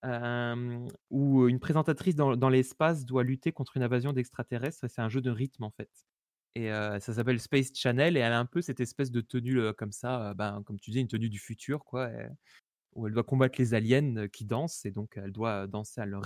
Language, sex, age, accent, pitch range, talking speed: French, male, 20-39, French, 120-155 Hz, 245 wpm